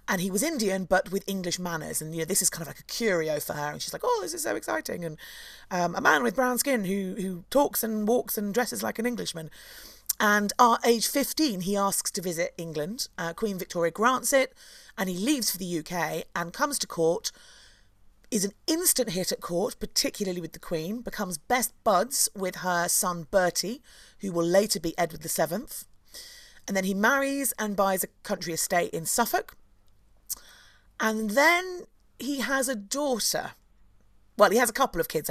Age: 30-49